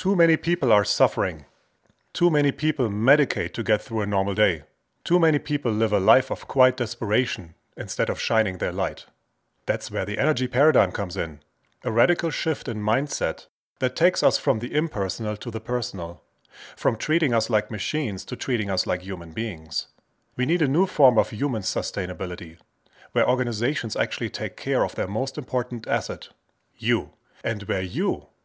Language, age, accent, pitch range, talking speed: English, 30-49, German, 105-140 Hz, 175 wpm